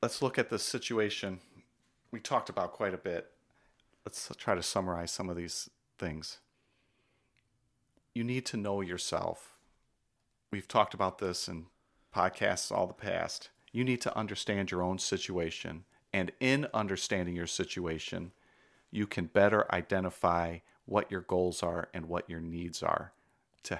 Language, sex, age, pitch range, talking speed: English, male, 40-59, 85-110 Hz, 150 wpm